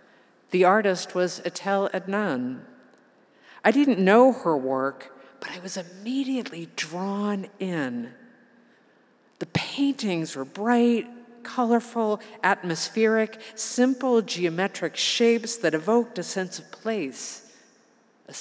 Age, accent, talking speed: 50-69, American, 105 wpm